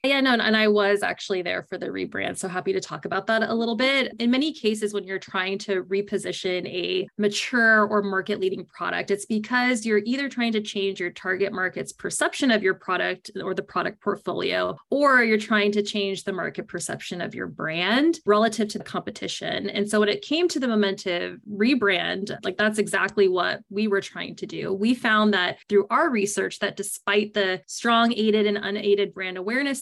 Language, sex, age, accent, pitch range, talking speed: English, female, 20-39, American, 190-225 Hz, 200 wpm